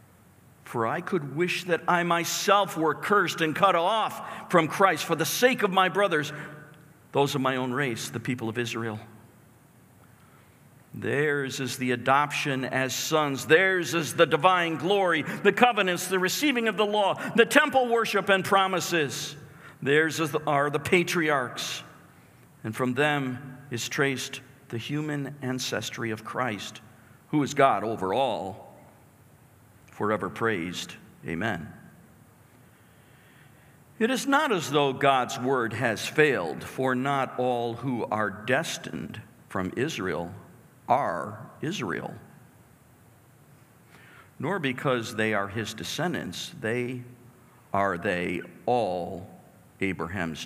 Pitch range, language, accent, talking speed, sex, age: 120-165 Hz, English, American, 125 wpm, male, 50-69